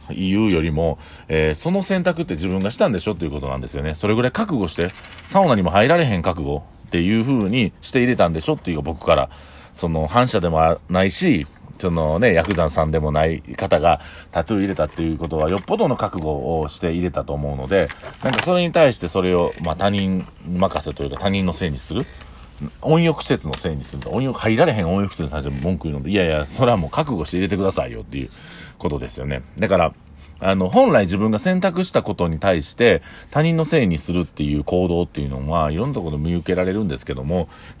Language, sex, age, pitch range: Japanese, male, 40-59, 75-105 Hz